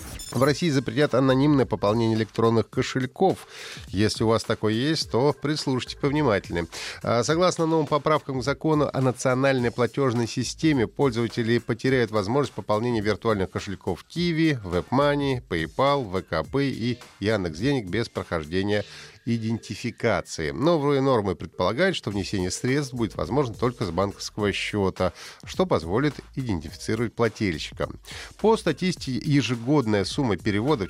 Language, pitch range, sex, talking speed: Russian, 105-145 Hz, male, 120 wpm